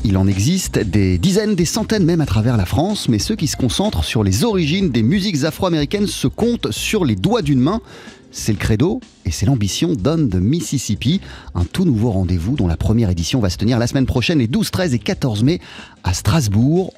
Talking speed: 215 wpm